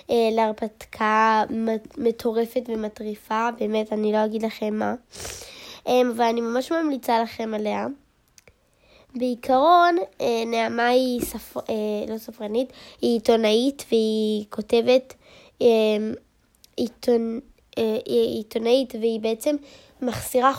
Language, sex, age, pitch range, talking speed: Hebrew, female, 10-29, 220-260 Hz, 85 wpm